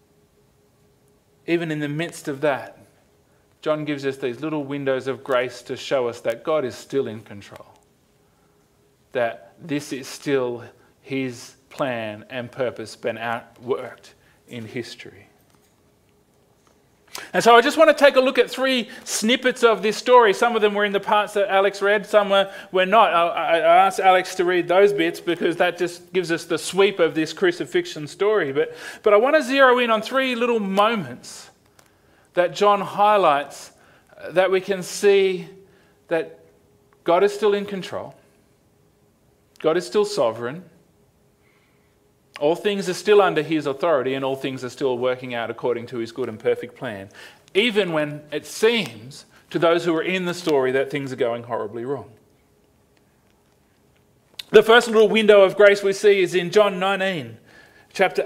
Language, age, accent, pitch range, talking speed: English, 30-49, Australian, 150-205 Hz, 165 wpm